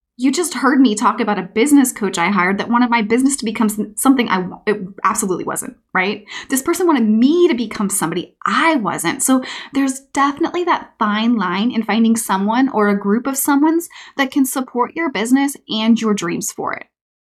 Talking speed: 190 wpm